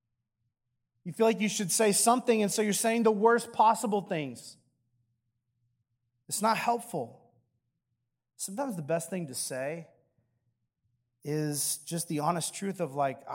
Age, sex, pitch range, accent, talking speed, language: 30-49, male, 120-160 Hz, American, 140 wpm, English